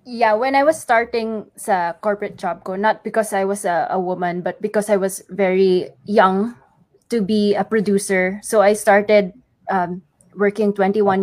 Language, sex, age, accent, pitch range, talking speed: English, female, 20-39, Filipino, 185-210 Hz, 170 wpm